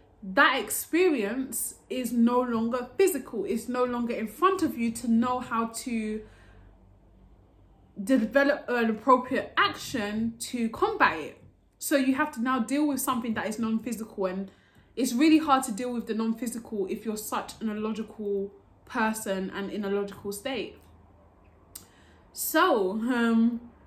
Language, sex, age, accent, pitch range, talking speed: English, female, 20-39, British, 205-255 Hz, 145 wpm